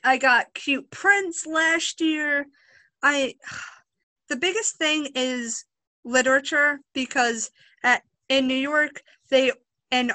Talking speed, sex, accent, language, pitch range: 110 wpm, female, American, English, 235-290 Hz